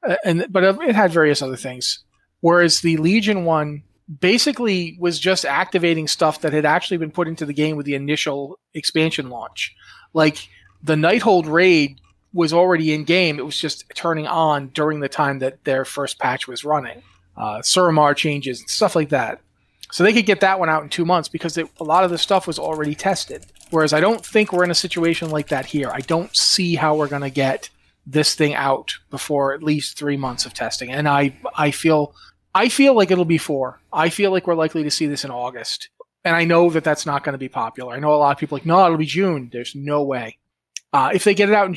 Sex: male